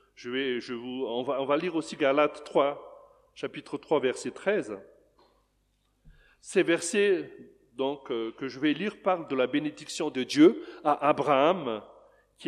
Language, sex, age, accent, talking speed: French, male, 40-59, French, 155 wpm